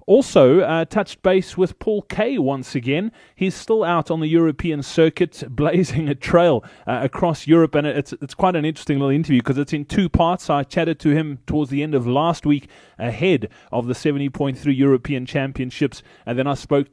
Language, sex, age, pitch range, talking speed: English, male, 30-49, 130-175 Hz, 195 wpm